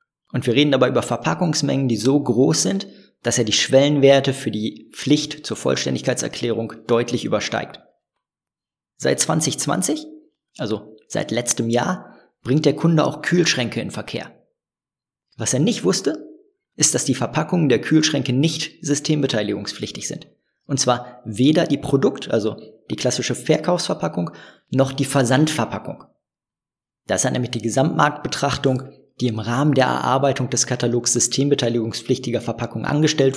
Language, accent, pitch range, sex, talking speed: German, German, 120-145 Hz, male, 135 wpm